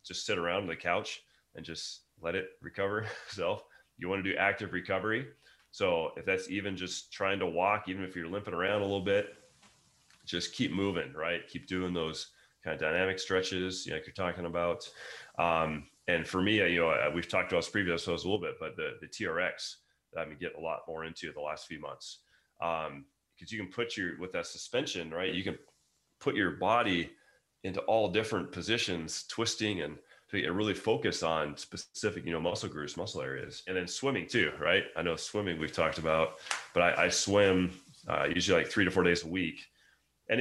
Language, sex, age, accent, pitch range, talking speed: English, male, 30-49, American, 85-100 Hz, 210 wpm